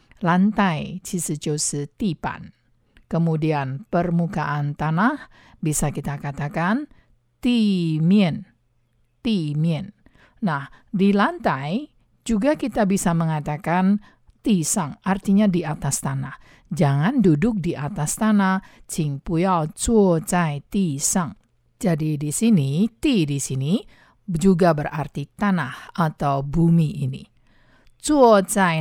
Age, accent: 50-69, Indonesian